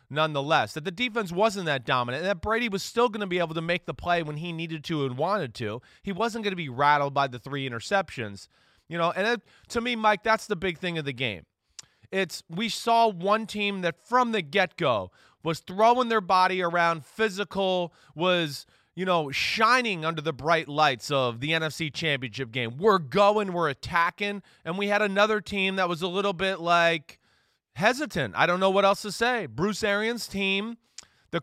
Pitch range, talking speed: 150-200 Hz, 200 wpm